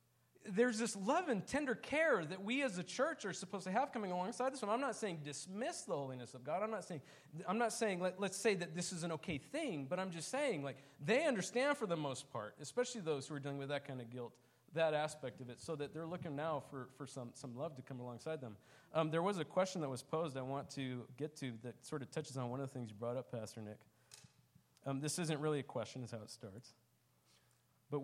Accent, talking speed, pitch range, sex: American, 255 wpm, 125-165 Hz, male